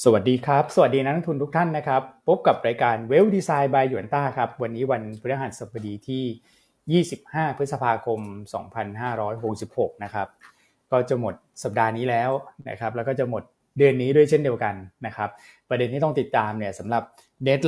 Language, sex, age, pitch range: Thai, male, 20-39, 110-135 Hz